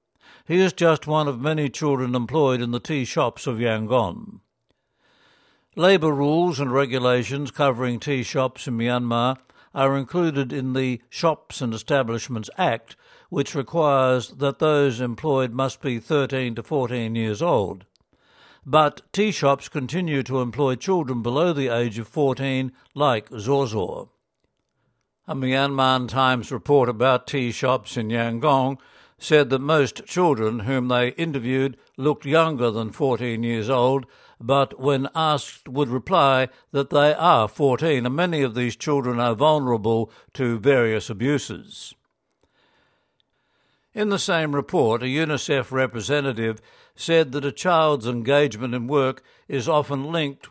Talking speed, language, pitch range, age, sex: 135 wpm, English, 125-150 Hz, 60-79, male